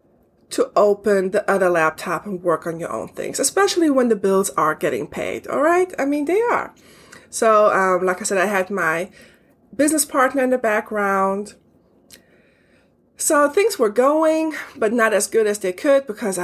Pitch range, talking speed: 185-245 Hz, 180 wpm